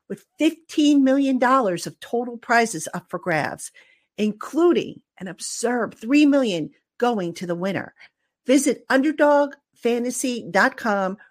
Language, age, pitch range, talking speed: English, 50-69, 180-240 Hz, 105 wpm